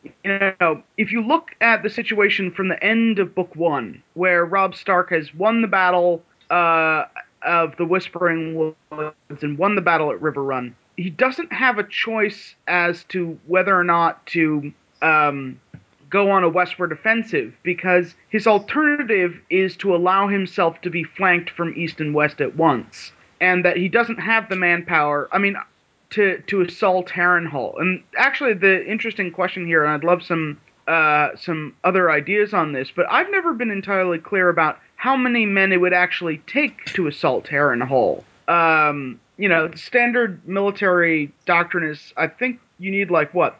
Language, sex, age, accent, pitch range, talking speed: English, male, 30-49, American, 170-210 Hz, 175 wpm